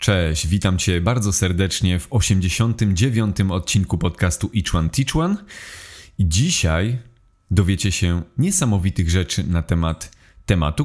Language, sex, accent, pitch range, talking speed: Polish, male, native, 90-115 Hz, 115 wpm